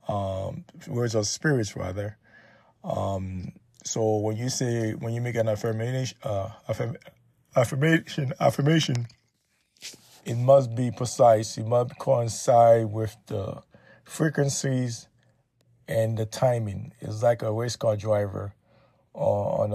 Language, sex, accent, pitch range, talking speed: English, male, American, 110-135 Hz, 120 wpm